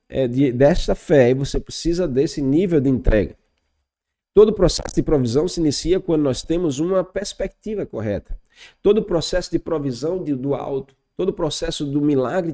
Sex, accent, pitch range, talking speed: male, Brazilian, 135-175 Hz, 165 wpm